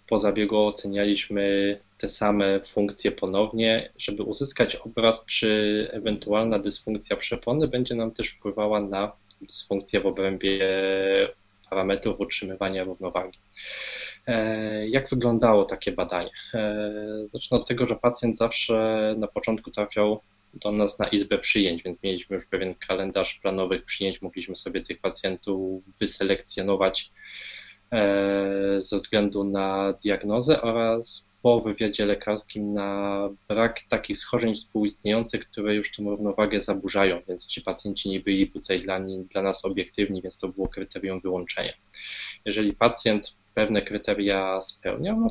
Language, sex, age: Polish, male, 20-39